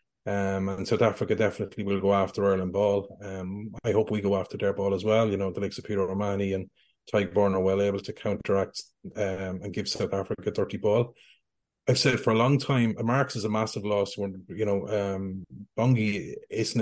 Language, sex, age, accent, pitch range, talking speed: English, male, 30-49, Irish, 100-105 Hz, 210 wpm